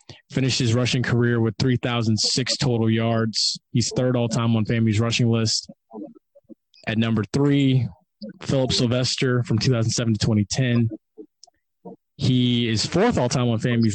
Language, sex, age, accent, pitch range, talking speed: English, male, 20-39, American, 115-130 Hz, 130 wpm